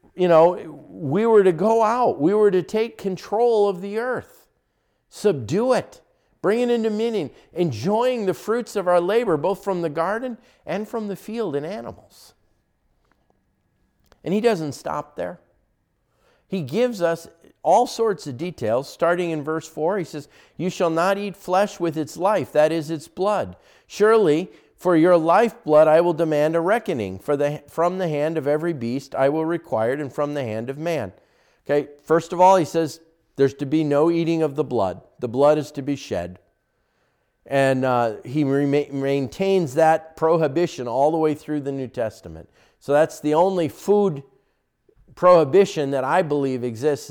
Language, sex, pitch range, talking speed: English, male, 140-185 Hz, 175 wpm